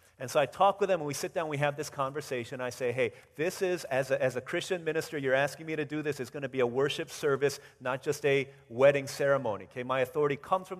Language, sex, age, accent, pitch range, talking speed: English, male, 40-59, American, 135-165 Hz, 265 wpm